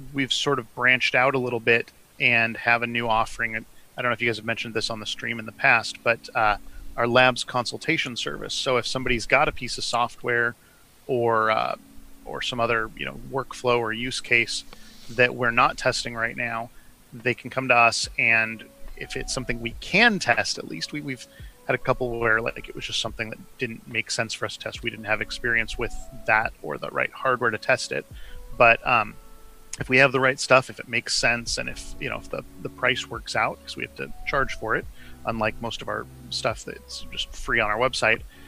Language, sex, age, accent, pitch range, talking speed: English, male, 30-49, American, 110-130 Hz, 230 wpm